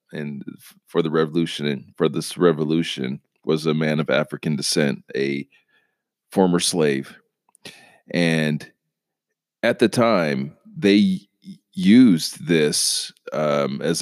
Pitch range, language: 85-110 Hz, English